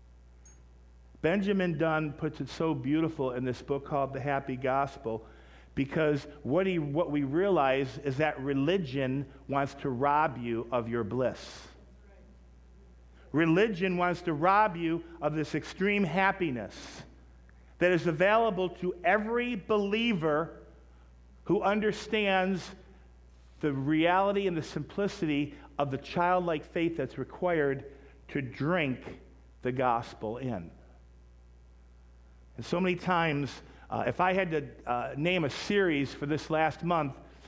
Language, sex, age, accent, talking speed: English, male, 50-69, American, 125 wpm